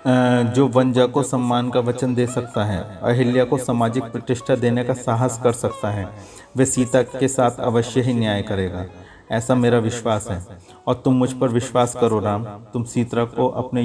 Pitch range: 115-130 Hz